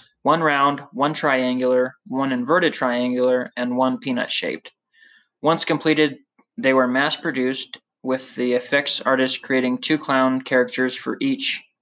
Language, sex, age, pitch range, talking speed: English, male, 20-39, 130-150 Hz, 125 wpm